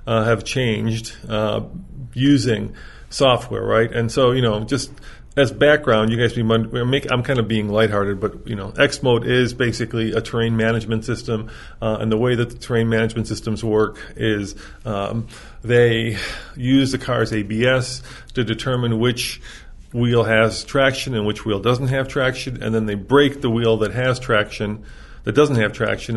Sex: male